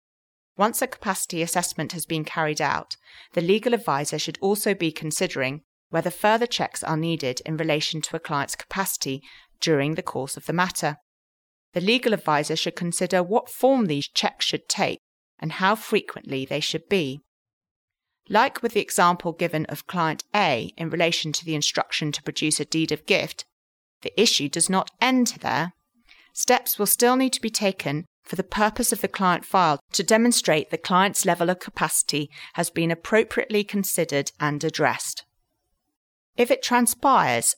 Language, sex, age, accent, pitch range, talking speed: English, female, 30-49, British, 150-200 Hz, 165 wpm